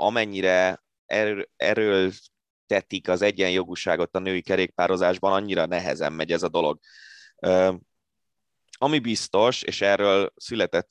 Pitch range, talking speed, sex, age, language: 90-115 Hz, 115 wpm, male, 20-39, Hungarian